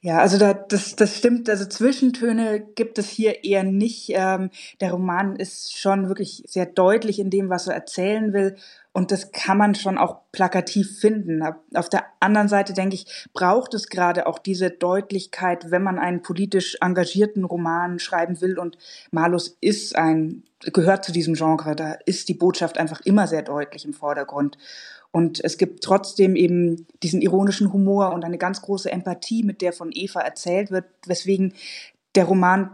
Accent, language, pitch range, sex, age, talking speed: German, German, 180-205 Hz, female, 20-39, 170 wpm